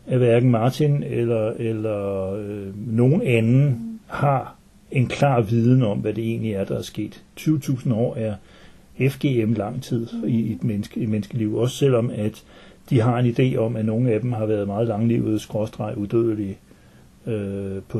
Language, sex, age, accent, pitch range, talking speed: Danish, male, 60-79, native, 110-145 Hz, 170 wpm